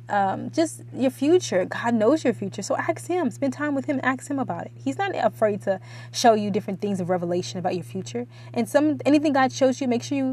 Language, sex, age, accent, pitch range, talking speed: English, female, 20-39, American, 170-250 Hz, 240 wpm